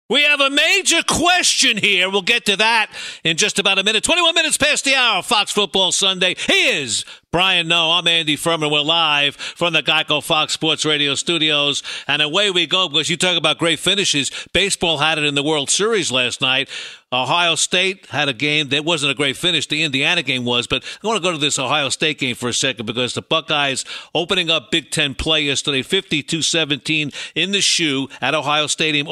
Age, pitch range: 60-79, 145-180 Hz